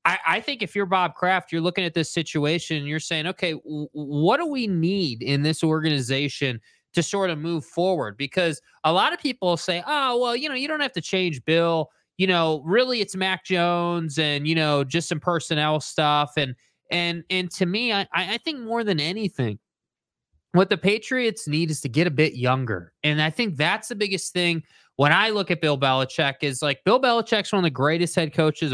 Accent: American